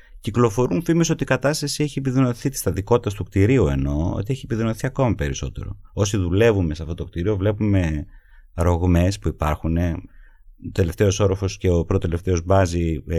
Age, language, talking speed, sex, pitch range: 30-49, Greek, 160 wpm, male, 85-115 Hz